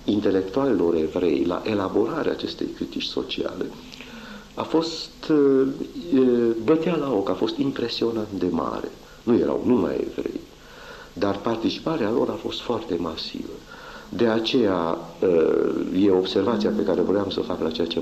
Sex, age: male, 50-69